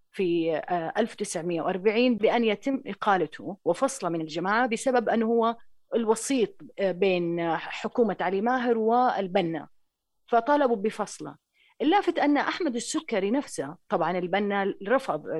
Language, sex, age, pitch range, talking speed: Arabic, female, 30-49, 175-245 Hz, 105 wpm